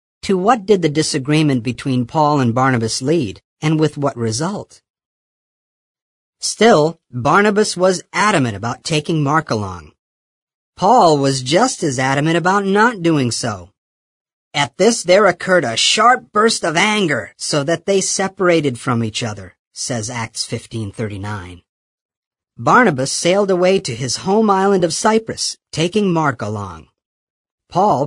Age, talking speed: 50-69, 135 wpm